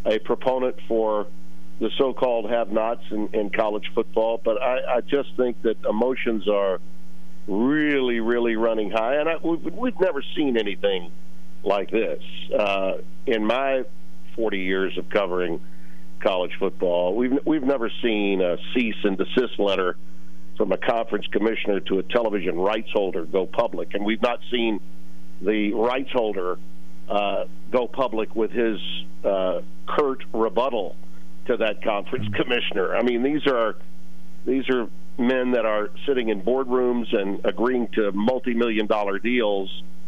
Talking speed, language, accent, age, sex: 145 wpm, English, American, 50-69, male